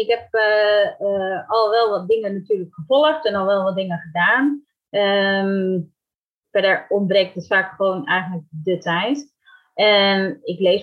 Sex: female